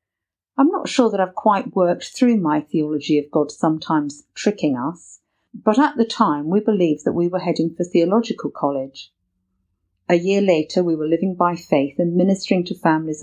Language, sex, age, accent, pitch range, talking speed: English, female, 50-69, British, 155-210 Hz, 180 wpm